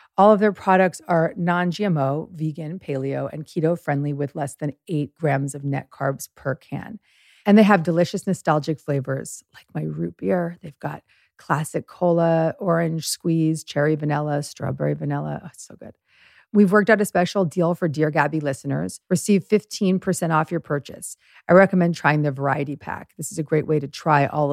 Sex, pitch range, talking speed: female, 140-170 Hz, 180 wpm